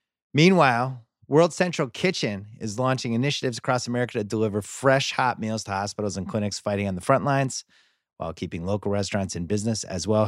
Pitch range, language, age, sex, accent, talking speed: 95-130 Hz, English, 30-49, male, American, 180 wpm